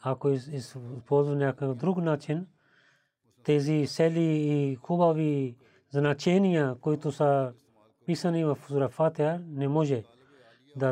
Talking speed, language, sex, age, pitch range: 100 wpm, Bulgarian, male, 30-49, 125-150 Hz